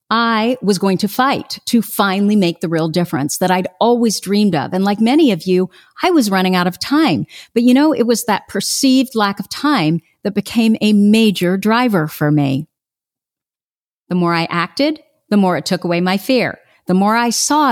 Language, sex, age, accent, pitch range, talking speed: English, female, 50-69, American, 185-240 Hz, 200 wpm